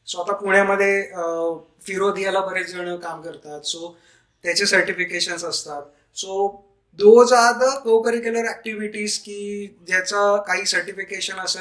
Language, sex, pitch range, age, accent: Marathi, male, 180-210 Hz, 20-39, native